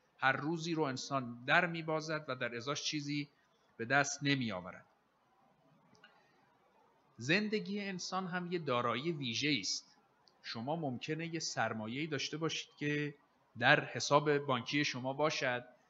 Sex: male